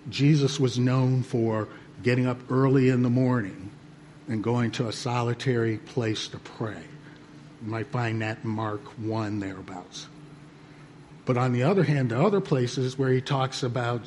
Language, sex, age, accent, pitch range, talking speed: English, male, 50-69, American, 120-150 Hz, 160 wpm